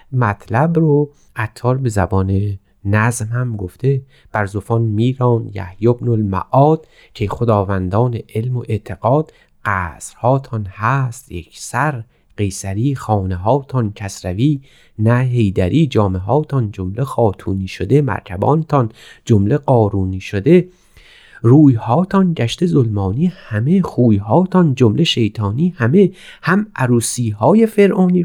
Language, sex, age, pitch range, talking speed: Persian, male, 30-49, 105-145 Hz, 100 wpm